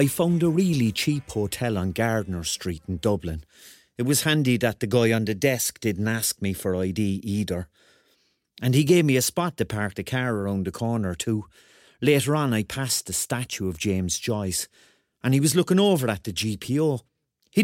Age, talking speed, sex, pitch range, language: 40-59, 195 wpm, male, 100-150 Hz, English